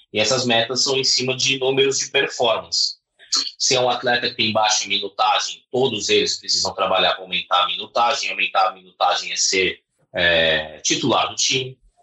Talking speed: 175 wpm